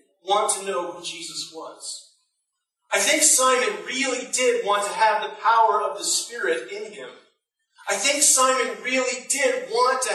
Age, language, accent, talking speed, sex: 40-59, English, American, 165 wpm, male